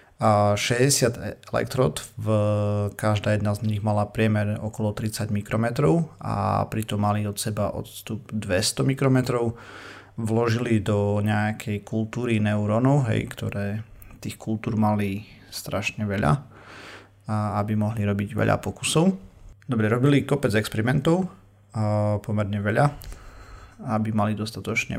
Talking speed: 110 wpm